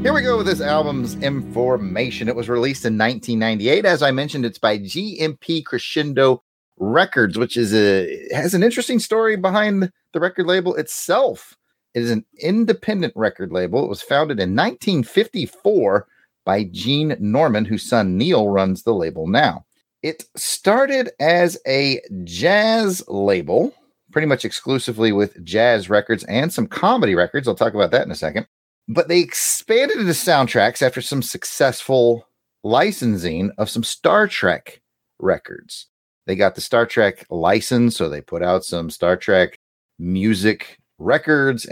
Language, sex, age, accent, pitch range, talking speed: English, male, 30-49, American, 100-155 Hz, 150 wpm